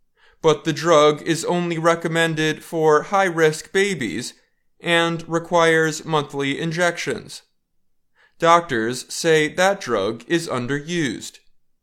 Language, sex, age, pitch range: Chinese, male, 20-39, 150-185 Hz